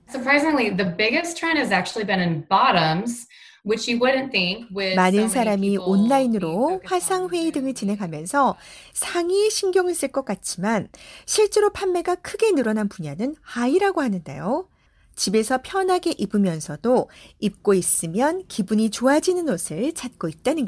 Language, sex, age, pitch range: Korean, female, 30-49, 185-300 Hz